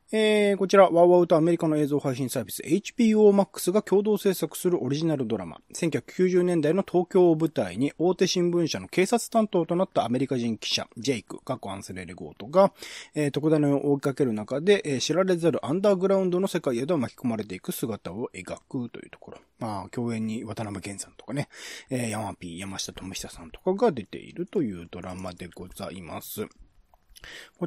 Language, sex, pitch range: Japanese, male, 105-175 Hz